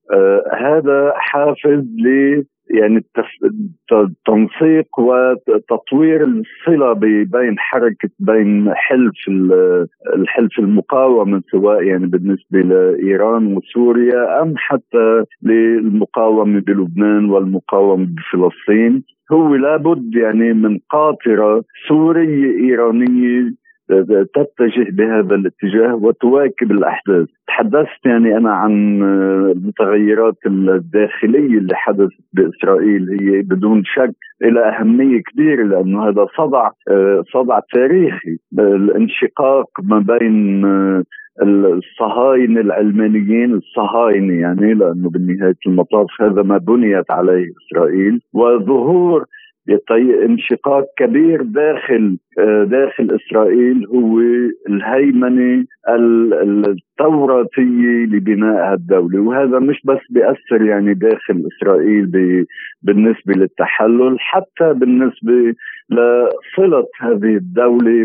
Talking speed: 85 wpm